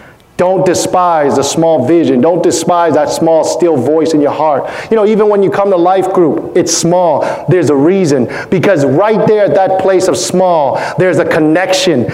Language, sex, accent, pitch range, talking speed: English, male, American, 160-200 Hz, 195 wpm